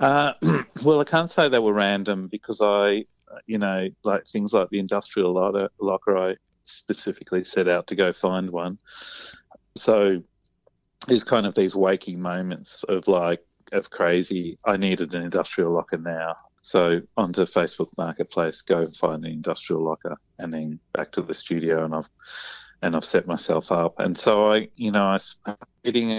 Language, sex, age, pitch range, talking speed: English, male, 40-59, 85-100 Hz, 165 wpm